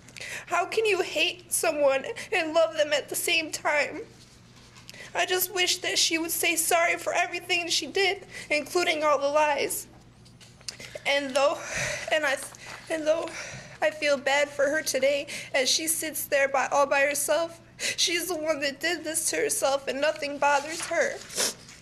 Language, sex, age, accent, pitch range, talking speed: English, female, 20-39, American, 295-360 Hz, 165 wpm